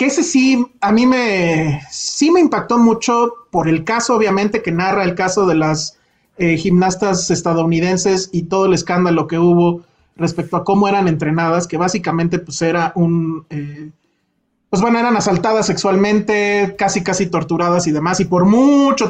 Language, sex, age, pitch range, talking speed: Spanish, male, 30-49, 175-210 Hz, 165 wpm